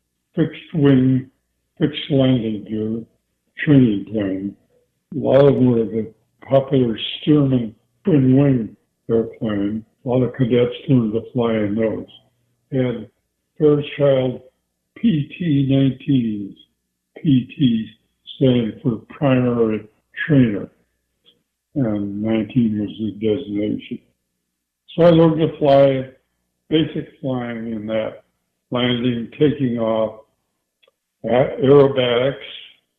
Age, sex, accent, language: 60-79, male, American, English